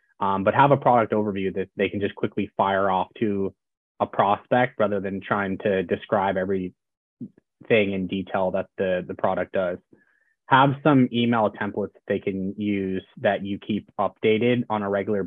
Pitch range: 95-110 Hz